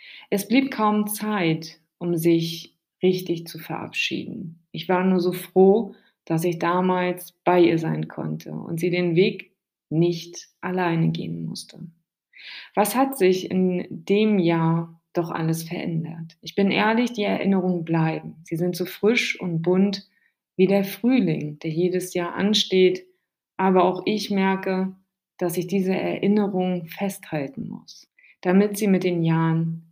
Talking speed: 145 wpm